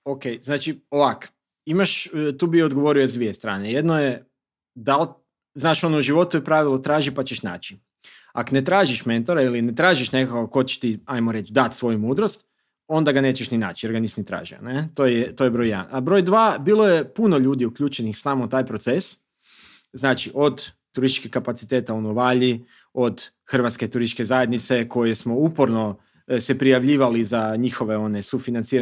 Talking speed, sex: 175 wpm, male